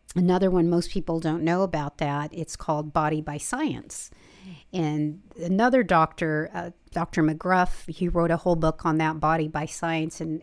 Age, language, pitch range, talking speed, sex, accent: 50-69, English, 155-180 Hz, 175 wpm, female, American